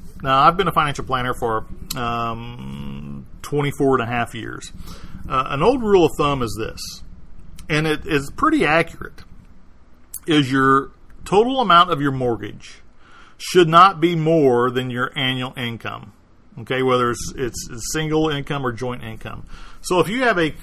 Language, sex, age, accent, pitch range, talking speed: English, male, 40-59, American, 115-155 Hz, 160 wpm